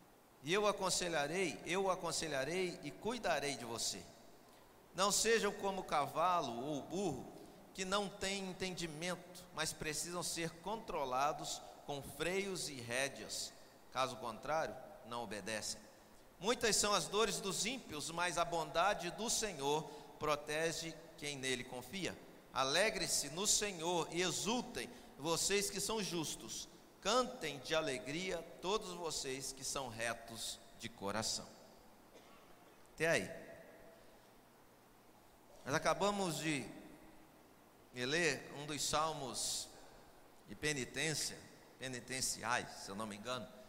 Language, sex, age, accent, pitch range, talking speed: Portuguese, male, 50-69, Brazilian, 130-190 Hz, 115 wpm